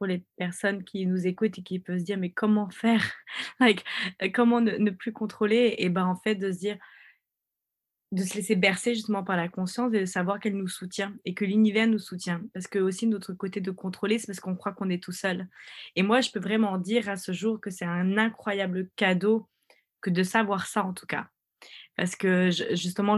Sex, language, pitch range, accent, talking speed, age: female, French, 180-210 Hz, French, 220 wpm, 20-39